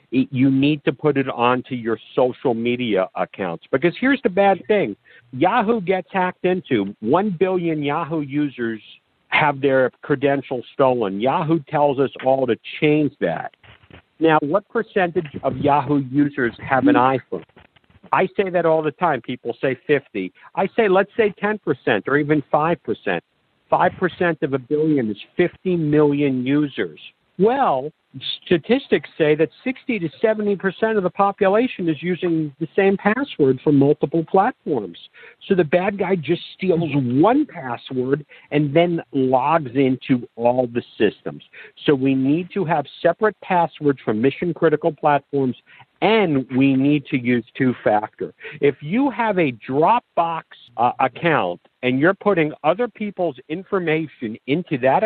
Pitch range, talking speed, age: 135-185 Hz, 145 wpm, 50-69